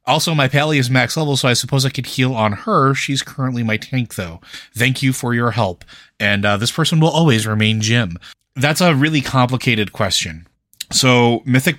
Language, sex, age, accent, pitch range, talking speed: English, male, 30-49, American, 100-130 Hz, 200 wpm